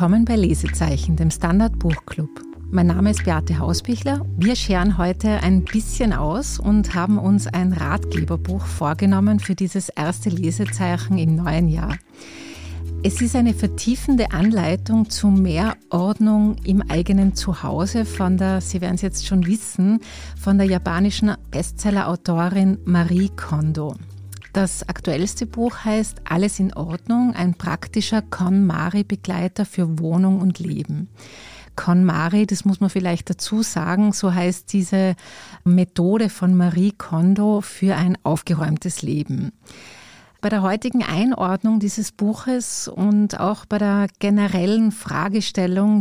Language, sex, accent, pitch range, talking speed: German, female, Austrian, 165-205 Hz, 130 wpm